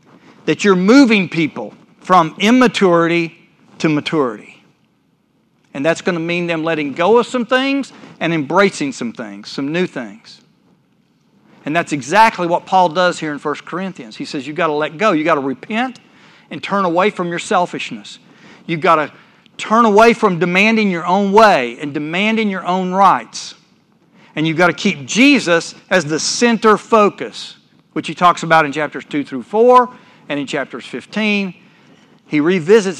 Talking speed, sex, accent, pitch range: 170 wpm, male, American, 165-220 Hz